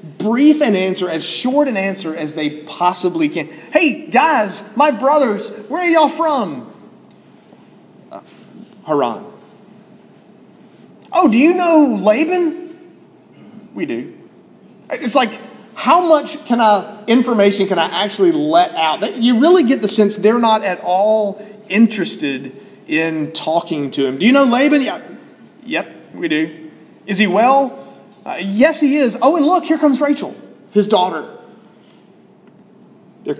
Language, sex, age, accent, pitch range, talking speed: English, male, 30-49, American, 160-260 Hz, 140 wpm